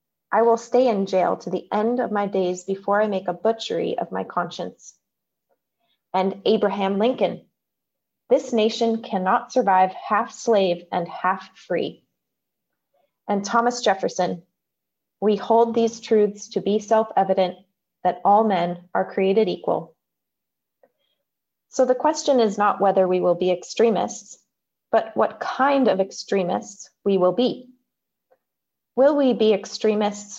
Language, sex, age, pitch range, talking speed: English, female, 30-49, 190-230 Hz, 135 wpm